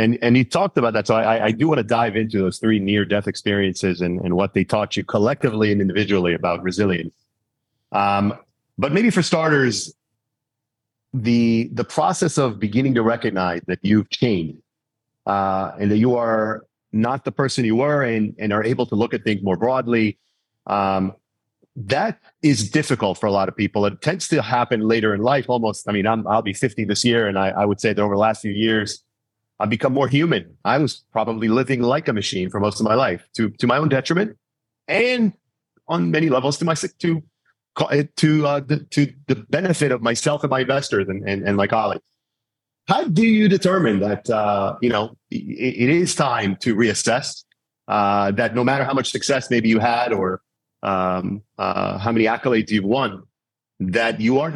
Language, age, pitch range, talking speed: English, 30-49, 105-135 Hz, 195 wpm